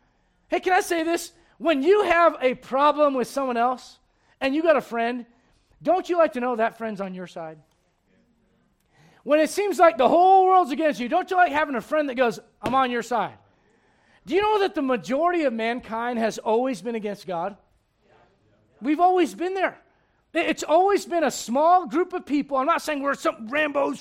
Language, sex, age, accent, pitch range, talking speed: English, male, 40-59, American, 210-325 Hz, 200 wpm